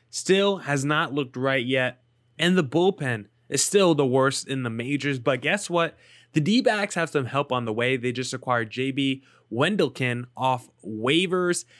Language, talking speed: English, 180 wpm